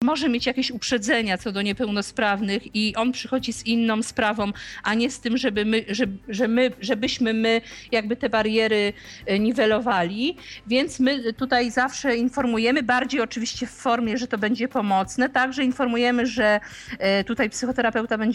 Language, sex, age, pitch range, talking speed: Polish, female, 50-69, 215-255 Hz, 135 wpm